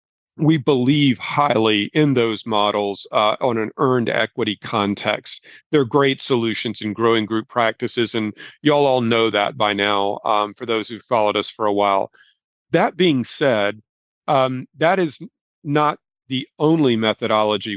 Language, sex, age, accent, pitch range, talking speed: English, male, 40-59, American, 105-130 Hz, 150 wpm